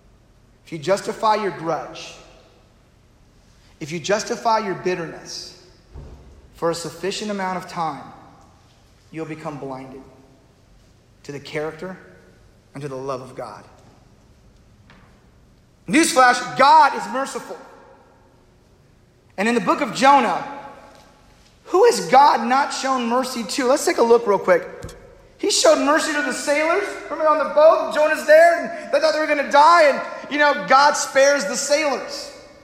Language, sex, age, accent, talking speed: English, male, 40-59, American, 140 wpm